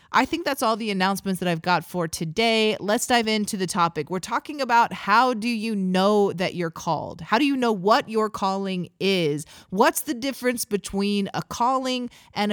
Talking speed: 195 wpm